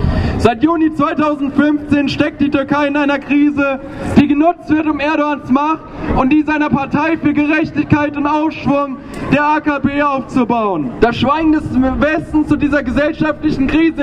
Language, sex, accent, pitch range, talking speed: German, male, German, 275-310 Hz, 145 wpm